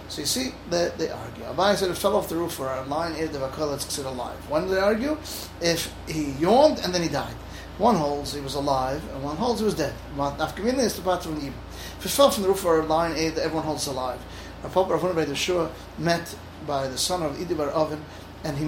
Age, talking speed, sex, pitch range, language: 30-49, 225 wpm, male, 140-180 Hz, English